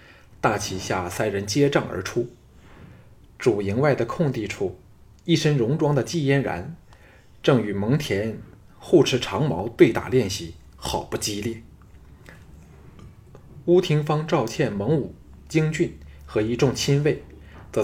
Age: 20-39